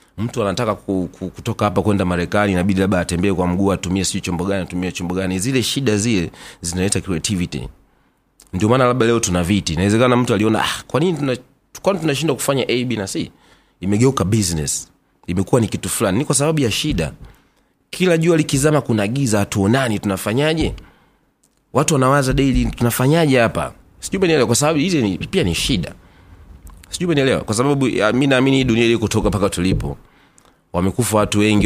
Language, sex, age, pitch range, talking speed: Swahili, male, 30-49, 95-130 Hz, 135 wpm